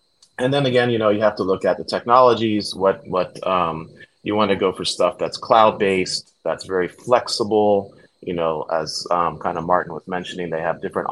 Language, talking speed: English, 205 wpm